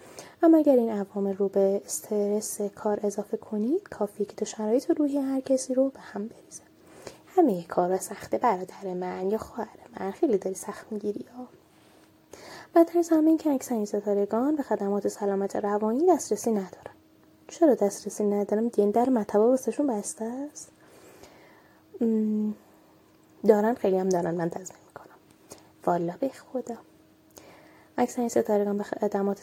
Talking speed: 140 wpm